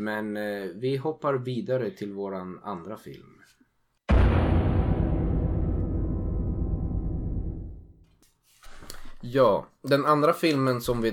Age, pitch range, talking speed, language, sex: 20-39, 95-120 Hz, 80 wpm, Swedish, male